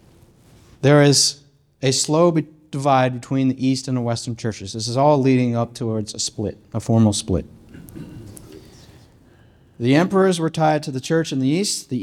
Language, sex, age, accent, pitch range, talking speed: English, male, 40-59, American, 115-135 Hz, 170 wpm